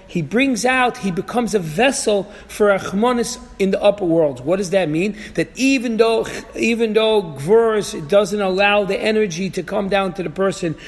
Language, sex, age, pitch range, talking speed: English, male, 40-59, 180-225 Hz, 180 wpm